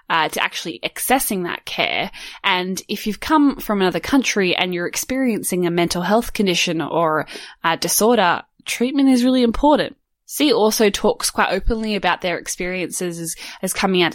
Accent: Australian